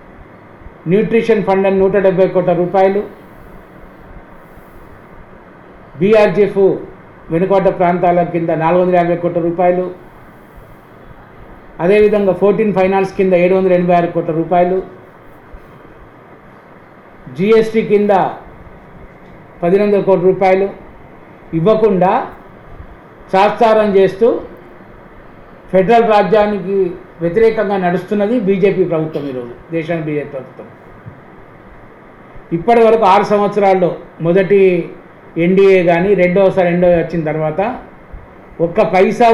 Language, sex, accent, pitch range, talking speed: Telugu, male, native, 175-205 Hz, 80 wpm